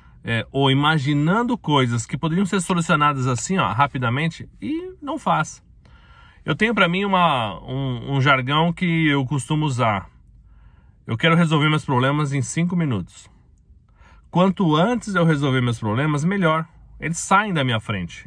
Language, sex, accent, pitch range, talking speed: Portuguese, male, Brazilian, 125-175 Hz, 140 wpm